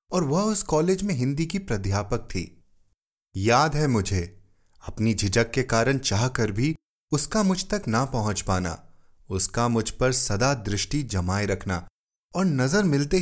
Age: 30-49